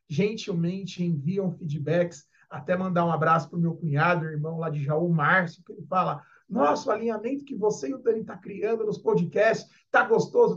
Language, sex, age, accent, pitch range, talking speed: Portuguese, male, 40-59, Brazilian, 165-215 Hz, 185 wpm